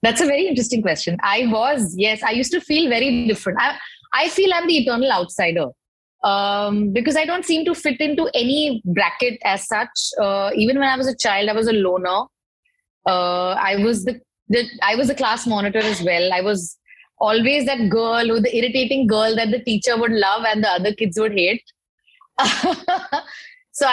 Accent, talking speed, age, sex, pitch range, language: Indian, 195 wpm, 20-39, female, 210-270 Hz, English